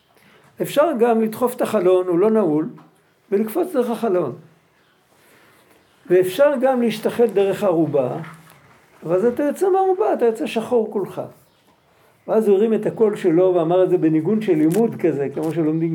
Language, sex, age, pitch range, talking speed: Hebrew, male, 50-69, 180-240 Hz, 145 wpm